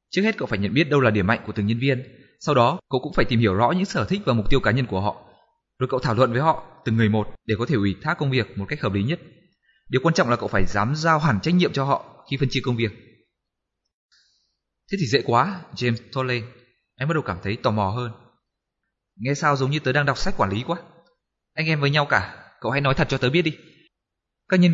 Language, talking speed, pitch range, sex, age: Vietnamese, 270 wpm, 115-155 Hz, male, 20-39